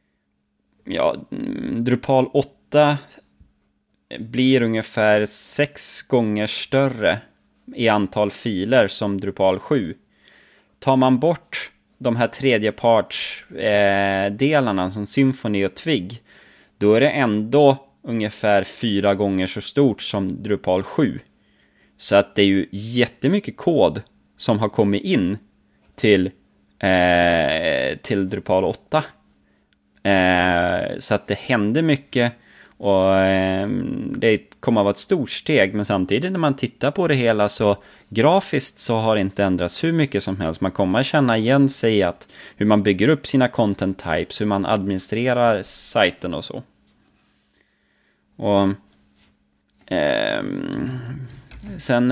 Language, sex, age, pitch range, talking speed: Swedish, male, 20-39, 95-130 Hz, 130 wpm